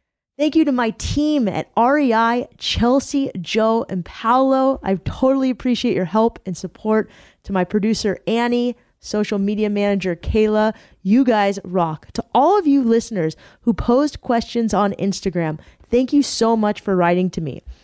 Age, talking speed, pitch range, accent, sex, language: 20-39, 160 wpm, 195-240 Hz, American, female, English